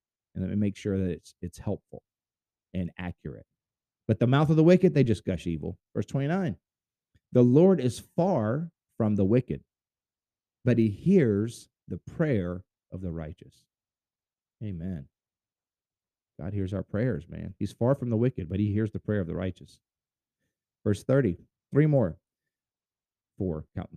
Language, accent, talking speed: English, American, 160 wpm